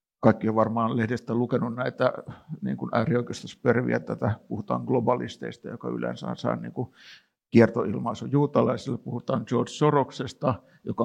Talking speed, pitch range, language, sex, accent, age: 120 wpm, 115-140 Hz, Finnish, male, native, 60-79